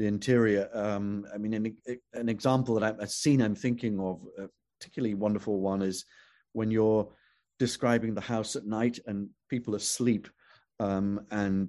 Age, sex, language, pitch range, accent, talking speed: 40-59, male, English, 100-120 Hz, British, 160 wpm